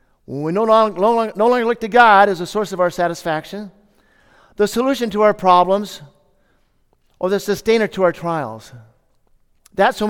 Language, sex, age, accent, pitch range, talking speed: English, male, 50-69, American, 140-190 Hz, 155 wpm